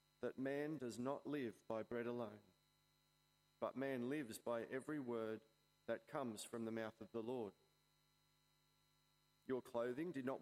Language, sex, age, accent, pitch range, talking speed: English, male, 40-59, Australian, 120-165 Hz, 150 wpm